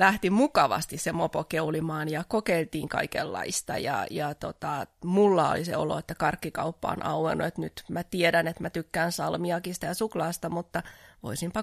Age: 20-39